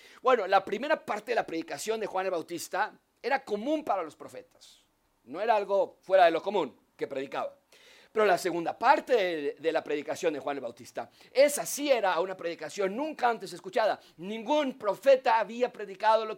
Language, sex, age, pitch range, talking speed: Spanish, male, 50-69, 180-255 Hz, 185 wpm